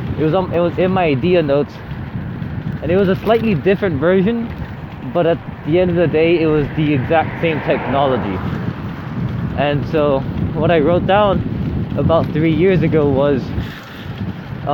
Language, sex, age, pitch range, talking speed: English, male, 20-39, 145-180 Hz, 160 wpm